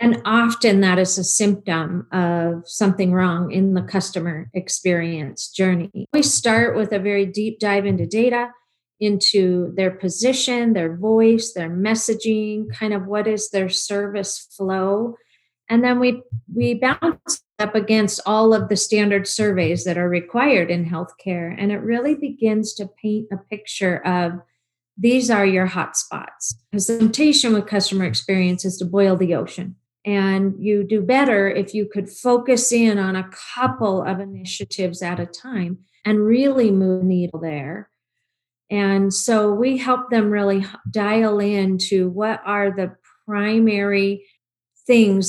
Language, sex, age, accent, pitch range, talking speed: English, female, 40-59, American, 185-220 Hz, 150 wpm